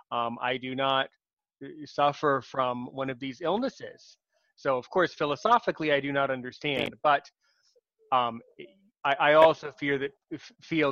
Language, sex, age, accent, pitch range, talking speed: English, male, 30-49, American, 135-195 Hz, 150 wpm